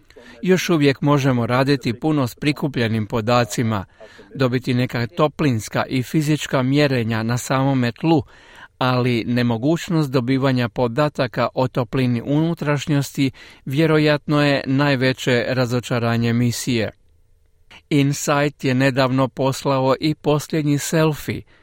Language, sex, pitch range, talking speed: Croatian, male, 120-145 Hz, 100 wpm